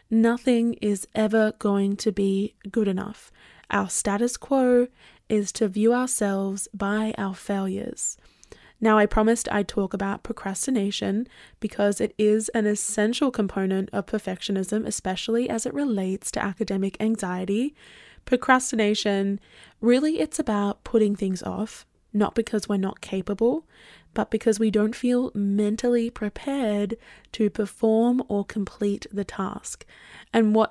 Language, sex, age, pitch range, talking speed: English, female, 10-29, 200-225 Hz, 130 wpm